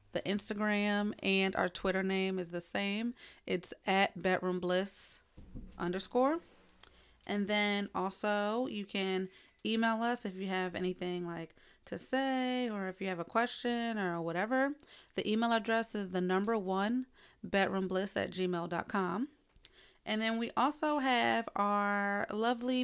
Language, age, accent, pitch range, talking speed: English, 30-49, American, 185-225 Hz, 140 wpm